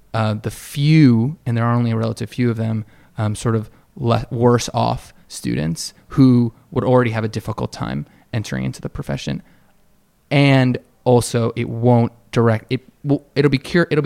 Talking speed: 175 wpm